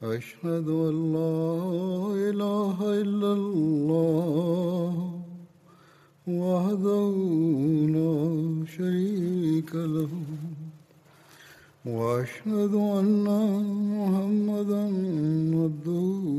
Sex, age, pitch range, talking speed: male, 60-79, 155-200 Hz, 50 wpm